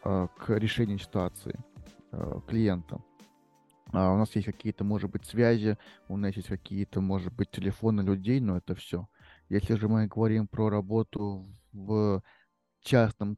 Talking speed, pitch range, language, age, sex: 135 wpm, 95-115 Hz, Russian, 20-39, male